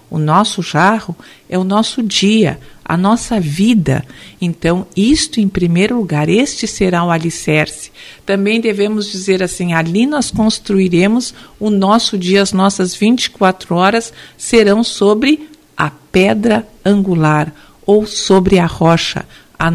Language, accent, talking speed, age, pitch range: Portuguese, Brazilian, 130 wpm, 50-69, 175-225 Hz